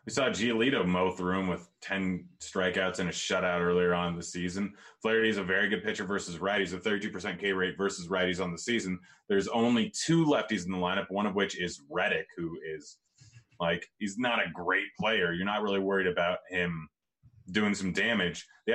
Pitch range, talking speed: 90-105 Hz, 210 wpm